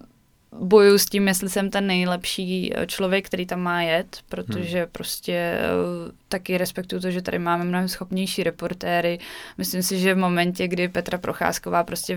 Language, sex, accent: Czech, female, native